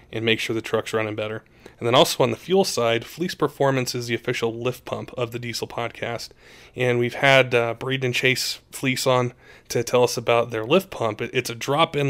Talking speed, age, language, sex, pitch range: 220 wpm, 20-39, English, male, 120-135 Hz